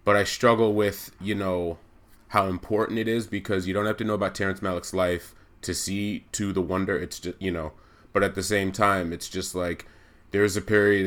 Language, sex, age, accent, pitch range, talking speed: English, male, 30-49, American, 90-105 Hz, 220 wpm